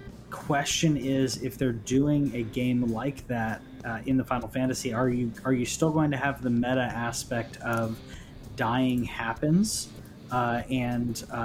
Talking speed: 155 wpm